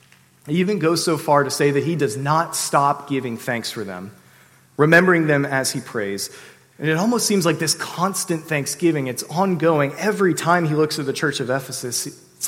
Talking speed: 195 wpm